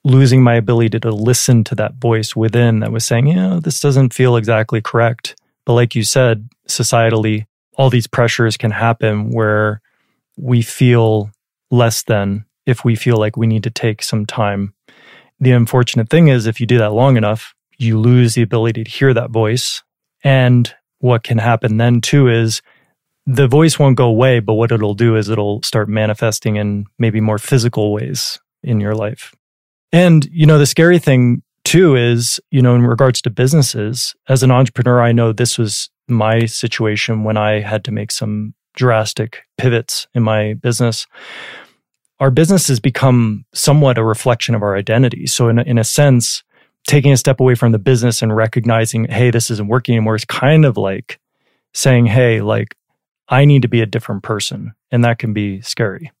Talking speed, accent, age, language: 185 wpm, American, 30-49, English